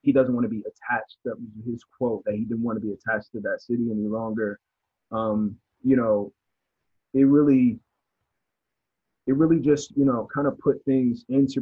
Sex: male